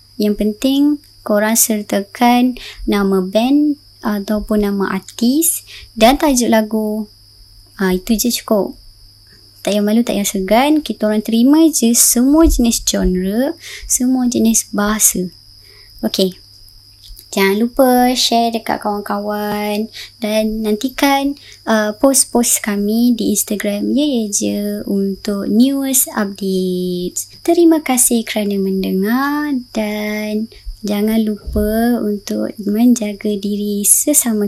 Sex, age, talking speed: male, 20-39, 110 wpm